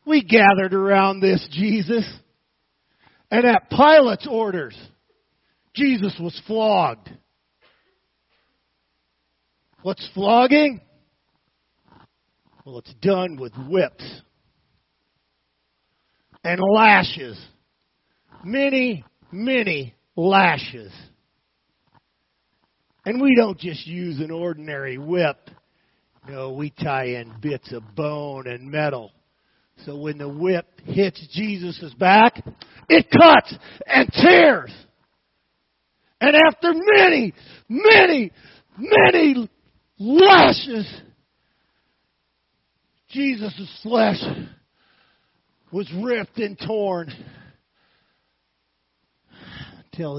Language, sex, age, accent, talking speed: English, male, 50-69, American, 80 wpm